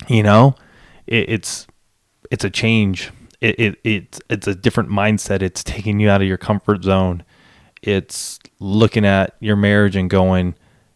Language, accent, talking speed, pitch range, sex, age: English, American, 160 wpm, 95-110 Hz, male, 20-39